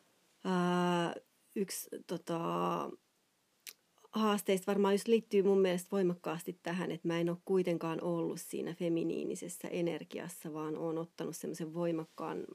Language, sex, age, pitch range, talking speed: Finnish, female, 30-49, 170-200 Hz, 120 wpm